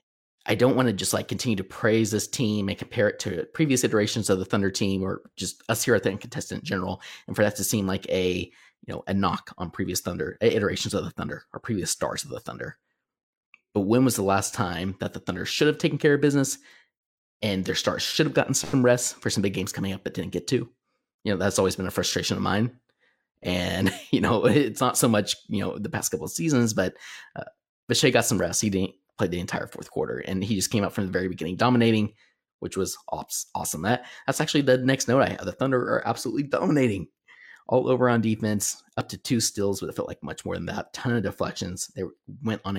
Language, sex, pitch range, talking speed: English, male, 95-125 Hz, 240 wpm